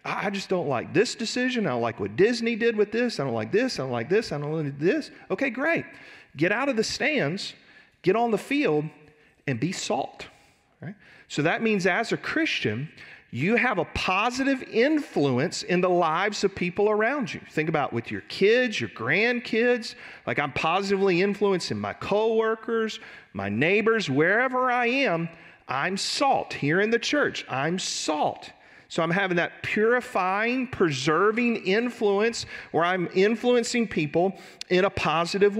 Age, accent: 40-59, American